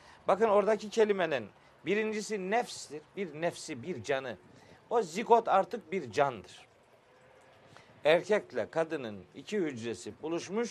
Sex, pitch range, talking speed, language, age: male, 150-205 Hz, 105 wpm, Turkish, 50-69